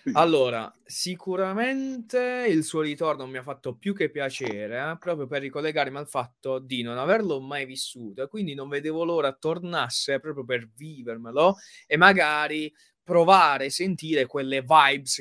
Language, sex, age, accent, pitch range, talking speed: Italian, male, 20-39, native, 125-155 Hz, 150 wpm